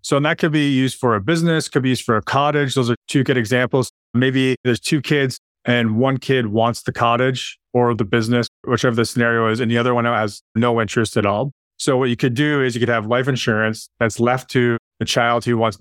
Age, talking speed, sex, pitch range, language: 30-49, 240 wpm, male, 110-130 Hz, English